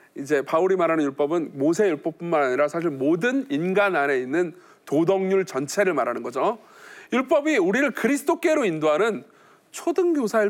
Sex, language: male, Korean